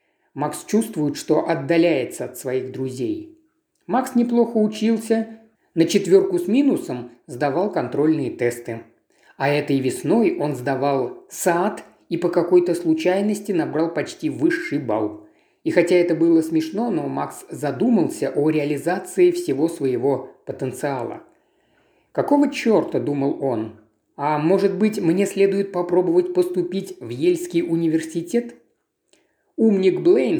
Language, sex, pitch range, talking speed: Russian, male, 155-250 Hz, 120 wpm